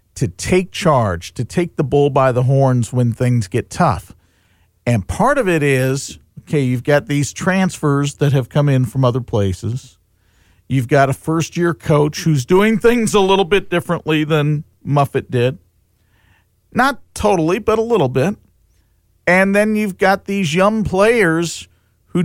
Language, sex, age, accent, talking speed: English, male, 50-69, American, 165 wpm